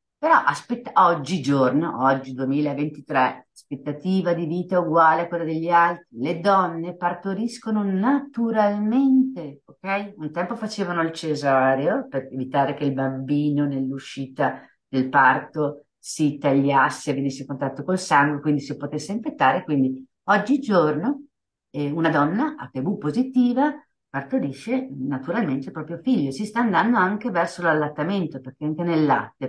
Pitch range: 135-185 Hz